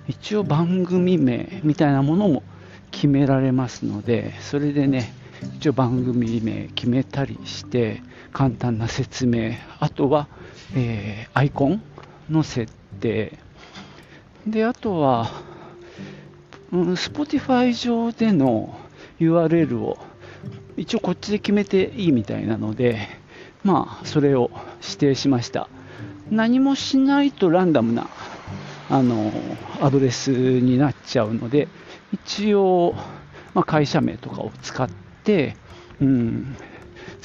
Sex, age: male, 50-69